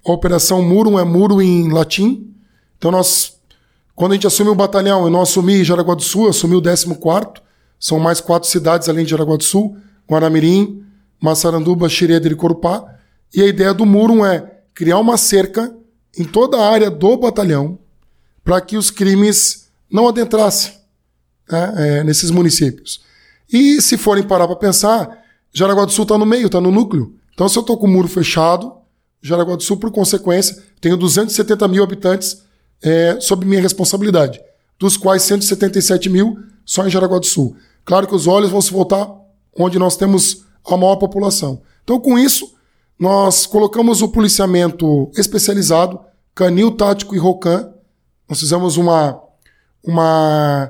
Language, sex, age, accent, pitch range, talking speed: Portuguese, male, 20-39, Brazilian, 175-210 Hz, 165 wpm